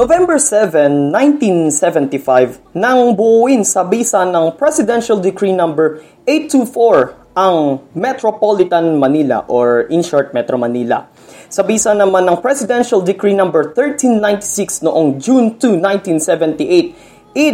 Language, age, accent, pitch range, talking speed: Filipino, 20-39, native, 140-220 Hz, 115 wpm